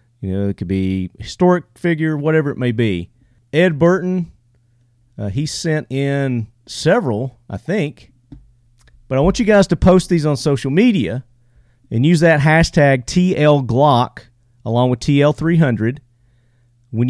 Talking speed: 140 wpm